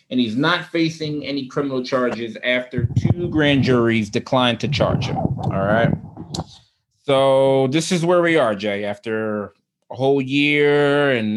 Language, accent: English, American